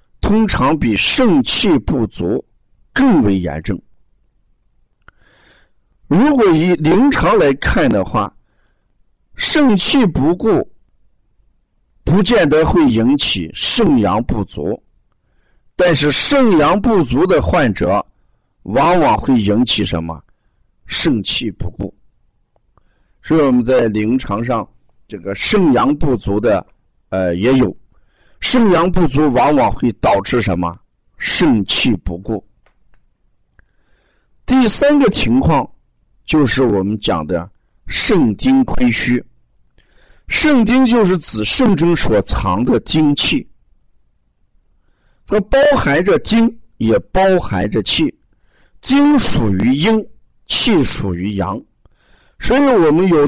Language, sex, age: Chinese, male, 50-69